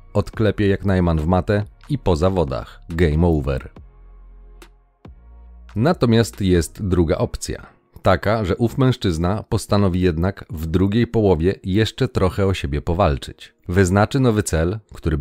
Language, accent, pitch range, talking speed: Polish, native, 80-105 Hz, 125 wpm